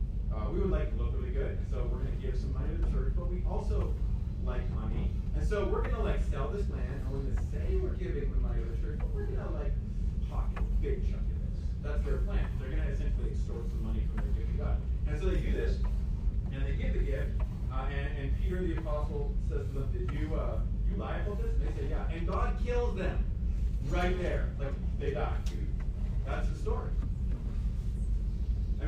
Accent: American